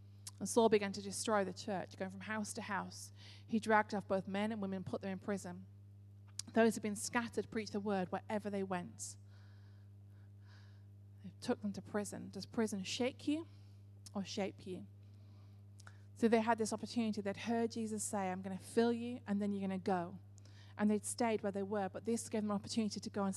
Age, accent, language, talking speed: 30-49, British, English, 210 wpm